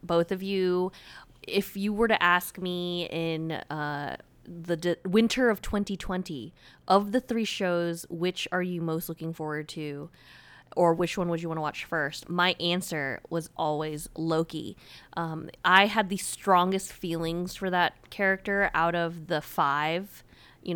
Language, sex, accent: English, female, American